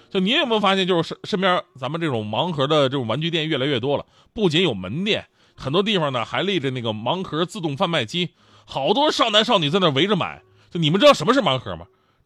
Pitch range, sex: 130-220 Hz, male